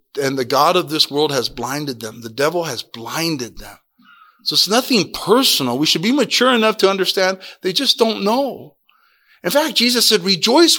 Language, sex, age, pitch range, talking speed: English, male, 40-59, 140-225 Hz, 190 wpm